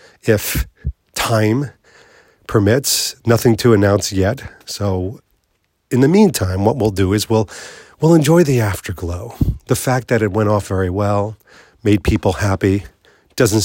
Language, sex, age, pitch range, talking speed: English, male, 40-59, 95-125 Hz, 140 wpm